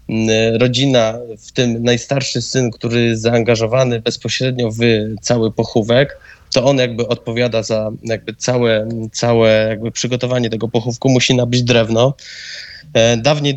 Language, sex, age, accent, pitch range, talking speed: Polish, male, 20-39, native, 115-125 Hz, 125 wpm